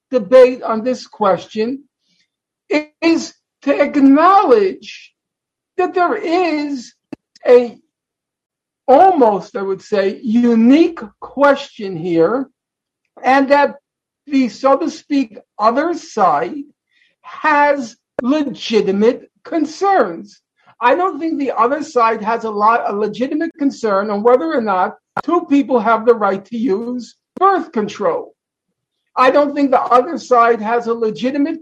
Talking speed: 120 wpm